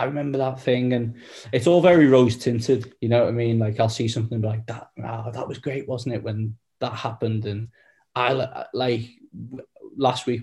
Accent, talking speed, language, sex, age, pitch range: British, 195 wpm, English, male, 10-29, 110-115 Hz